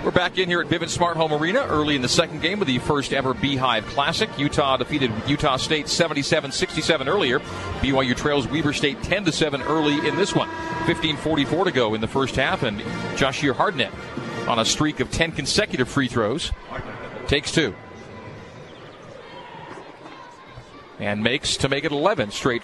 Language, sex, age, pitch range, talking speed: English, male, 40-59, 130-160 Hz, 160 wpm